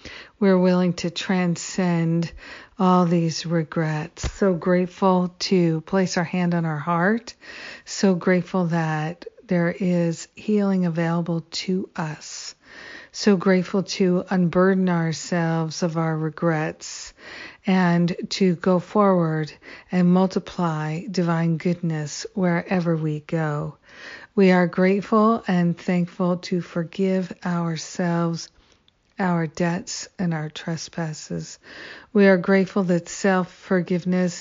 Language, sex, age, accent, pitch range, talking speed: English, female, 50-69, American, 170-190 Hz, 110 wpm